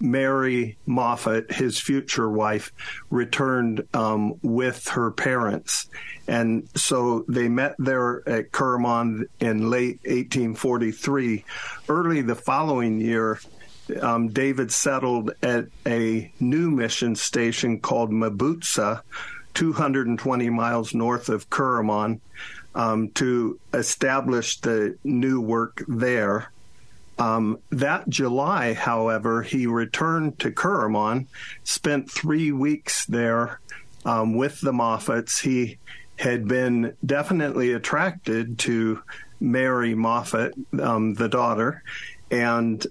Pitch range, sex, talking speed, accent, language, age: 115-130 Hz, male, 105 wpm, American, English, 50-69